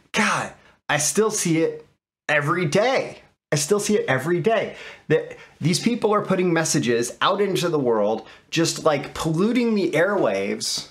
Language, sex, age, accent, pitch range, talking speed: English, male, 30-49, American, 140-195 Hz, 155 wpm